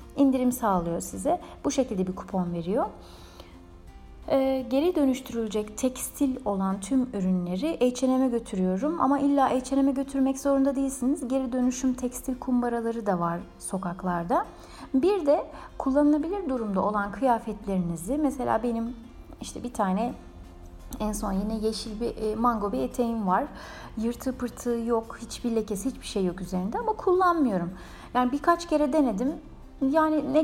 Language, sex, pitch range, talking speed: Turkish, female, 205-280 Hz, 130 wpm